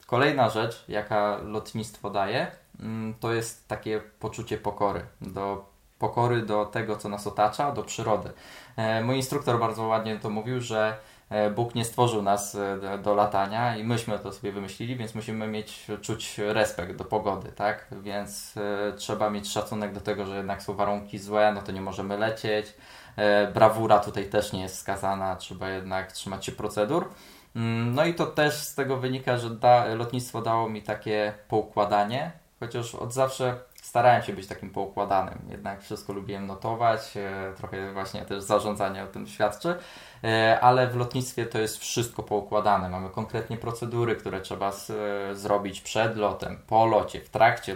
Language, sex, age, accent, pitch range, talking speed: Polish, male, 20-39, native, 105-120 Hz, 155 wpm